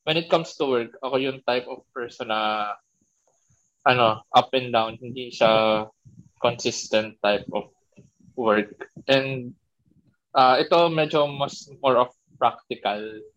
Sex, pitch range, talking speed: male, 115-145 Hz, 130 wpm